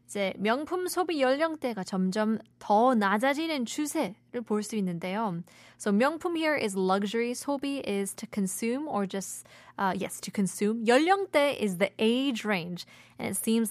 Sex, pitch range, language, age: female, 195-255 Hz, Korean, 20-39